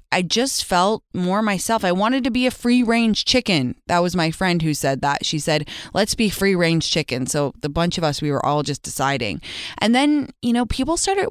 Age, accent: 20-39, American